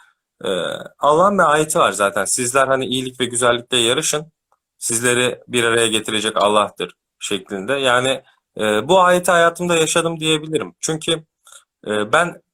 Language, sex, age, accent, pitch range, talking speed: Turkish, male, 40-59, native, 120-160 Hz, 120 wpm